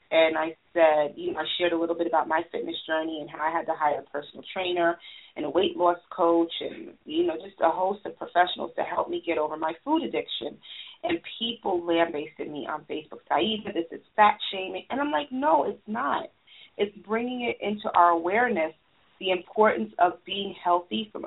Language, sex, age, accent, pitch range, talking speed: English, female, 30-49, American, 170-220 Hz, 210 wpm